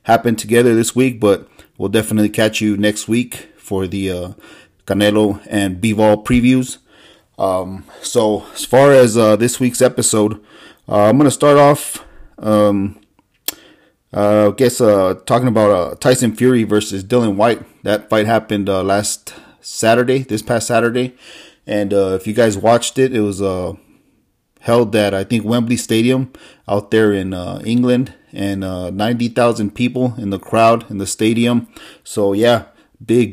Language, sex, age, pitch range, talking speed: English, male, 30-49, 100-120 Hz, 160 wpm